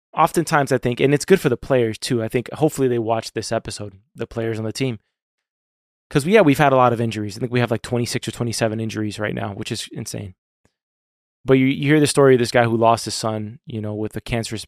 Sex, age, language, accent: male, 20-39, English, American